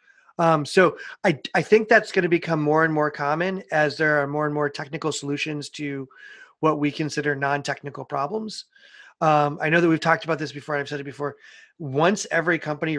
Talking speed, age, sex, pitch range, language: 200 wpm, 30-49, male, 140-170 Hz, English